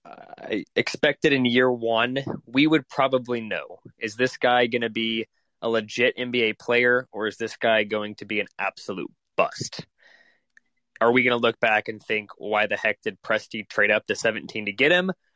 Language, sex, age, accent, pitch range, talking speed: English, male, 20-39, American, 110-130 Hz, 190 wpm